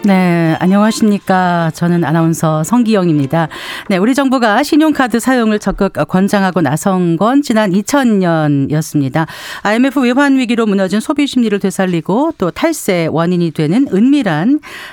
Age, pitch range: 40-59, 165-245 Hz